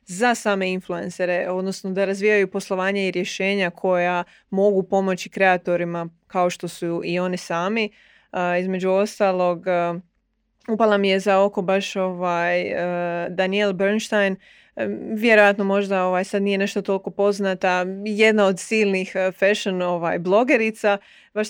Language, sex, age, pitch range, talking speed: Croatian, female, 20-39, 185-210 Hz, 140 wpm